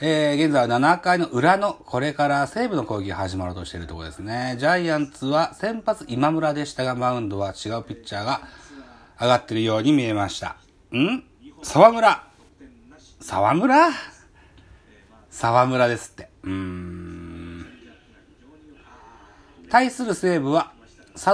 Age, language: 40-59, Japanese